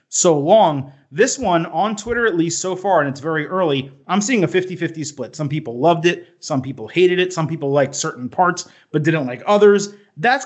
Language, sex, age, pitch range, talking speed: English, male, 30-49, 135-180 Hz, 220 wpm